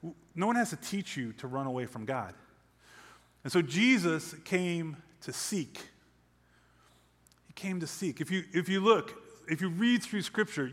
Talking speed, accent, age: 170 wpm, American, 30-49